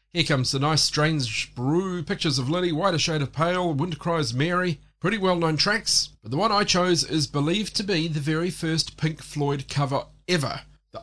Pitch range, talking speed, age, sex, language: 135-180 Hz, 200 wpm, 40-59, male, English